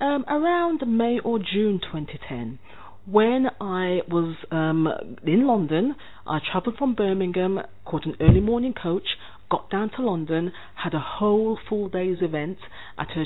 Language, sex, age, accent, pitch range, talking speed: English, female, 40-59, British, 150-215 Hz, 150 wpm